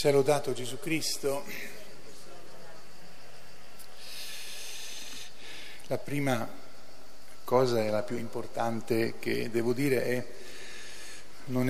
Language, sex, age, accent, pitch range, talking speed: Italian, male, 40-59, native, 110-125 Hz, 80 wpm